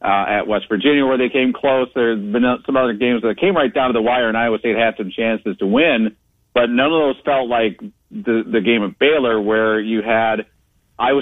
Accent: American